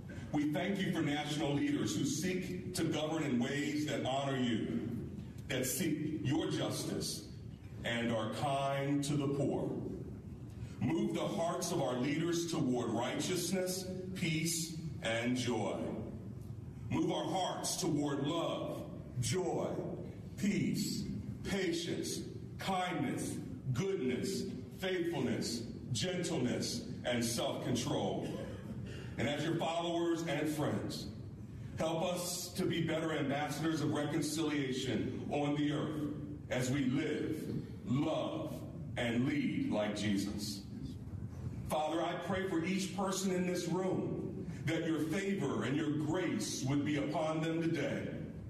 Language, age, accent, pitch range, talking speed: English, 50-69, American, 125-170 Hz, 120 wpm